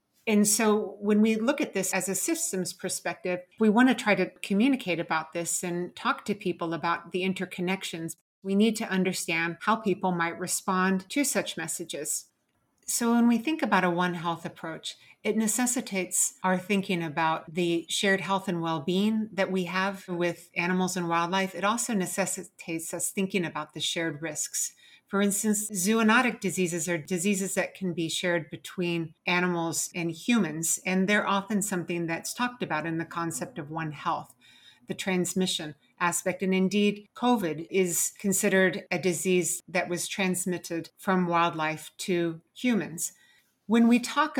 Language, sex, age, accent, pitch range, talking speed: English, female, 40-59, American, 170-205 Hz, 160 wpm